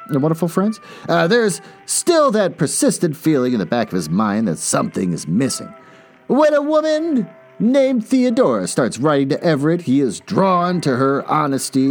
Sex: male